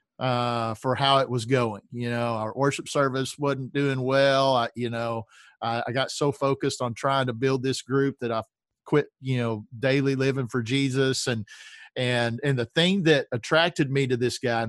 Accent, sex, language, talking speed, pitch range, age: American, male, English, 195 wpm, 120-145 Hz, 40-59